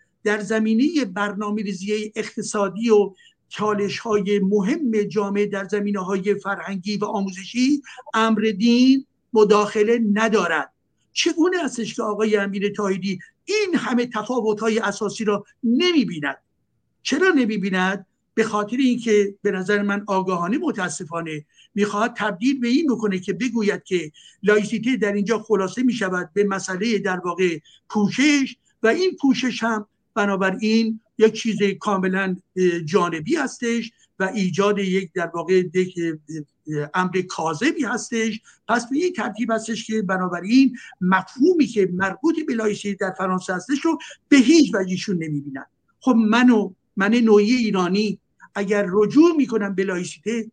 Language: Persian